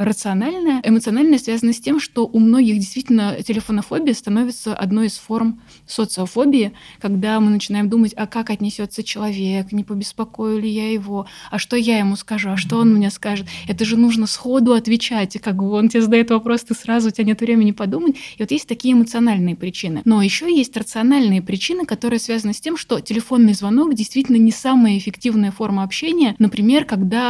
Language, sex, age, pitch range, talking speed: Russian, female, 20-39, 200-235 Hz, 180 wpm